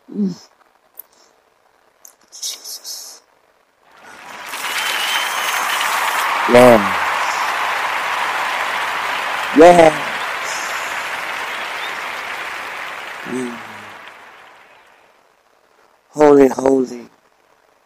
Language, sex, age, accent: English, male, 60-79, American